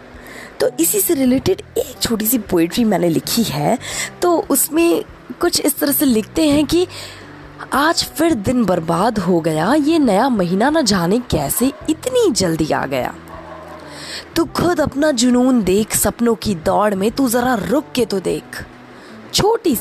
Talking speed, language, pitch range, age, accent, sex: 160 wpm, Hindi, 190-290 Hz, 20-39, native, female